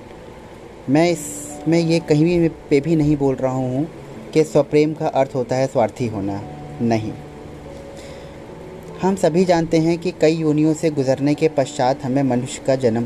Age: 30-49